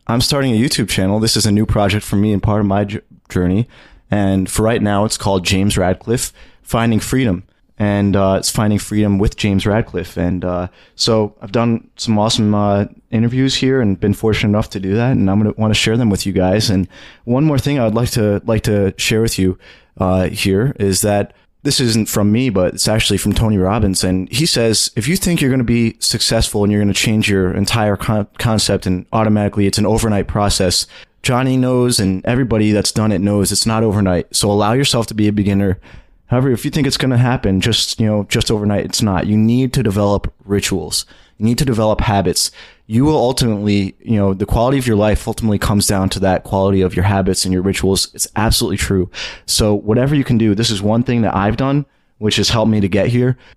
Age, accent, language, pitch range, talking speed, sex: 20-39, American, English, 100-115 Hz, 225 wpm, male